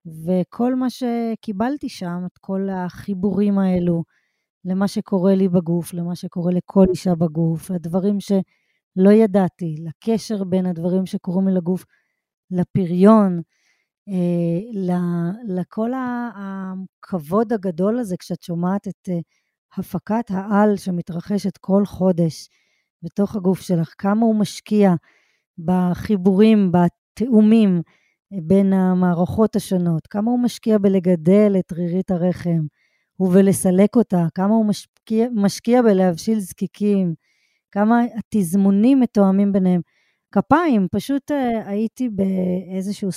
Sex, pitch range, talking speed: female, 180-205 Hz, 100 wpm